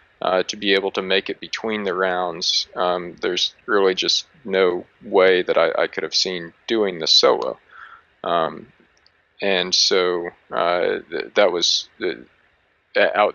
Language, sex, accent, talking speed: English, male, American, 145 wpm